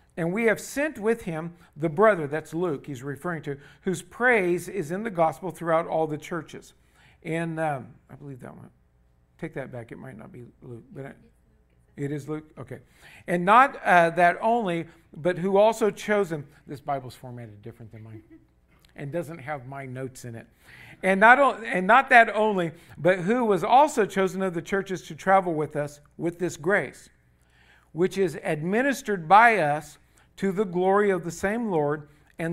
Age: 50-69